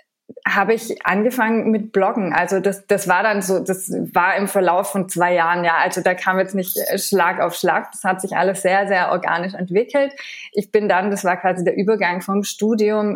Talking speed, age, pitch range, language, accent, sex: 205 wpm, 20-39, 180-215 Hz, German, German, female